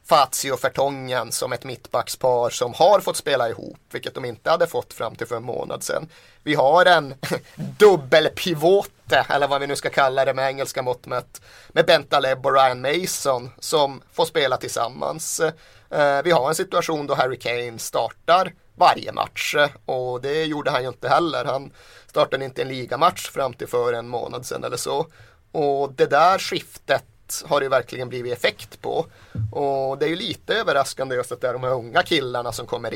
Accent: native